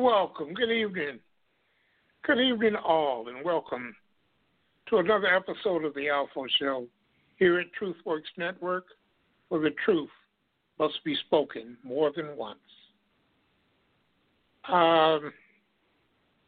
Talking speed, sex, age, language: 105 wpm, male, 60-79, English